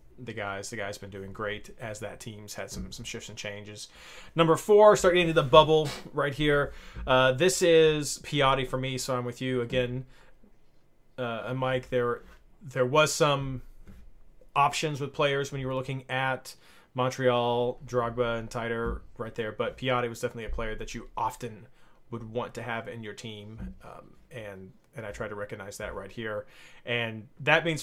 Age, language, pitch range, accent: 30-49, English, 115-135 Hz, American